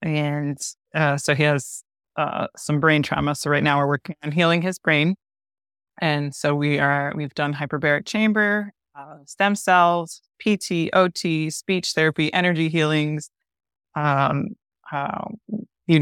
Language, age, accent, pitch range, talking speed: English, 20-39, American, 145-170 Hz, 140 wpm